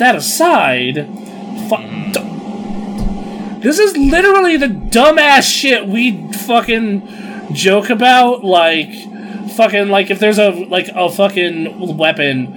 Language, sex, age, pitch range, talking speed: English, male, 20-39, 135-205 Hz, 105 wpm